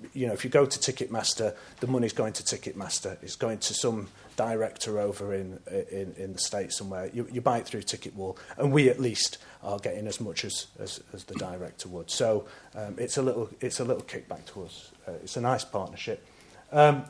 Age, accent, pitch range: 30-49, British, 110-145 Hz